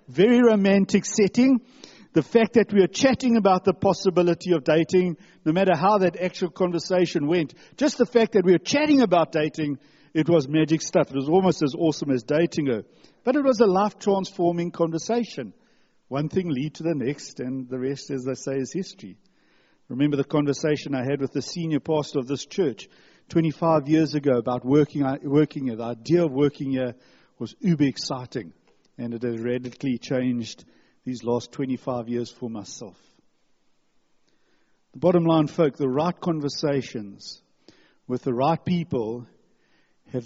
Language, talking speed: English, 165 wpm